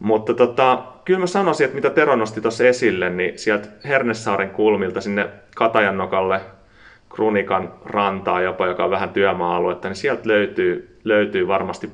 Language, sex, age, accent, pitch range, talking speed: Finnish, male, 30-49, native, 90-110 Hz, 145 wpm